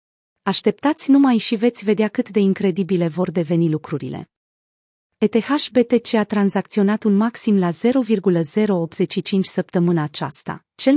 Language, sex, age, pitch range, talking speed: Romanian, female, 30-49, 180-225 Hz, 120 wpm